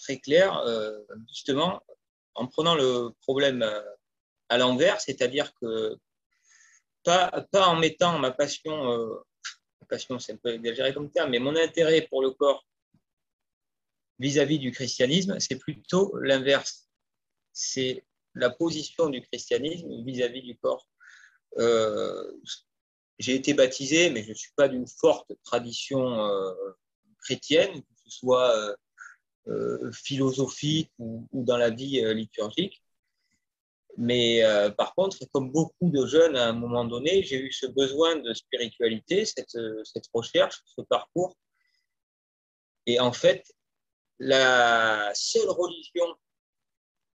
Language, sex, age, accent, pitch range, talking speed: French, male, 30-49, French, 120-155 Hz, 130 wpm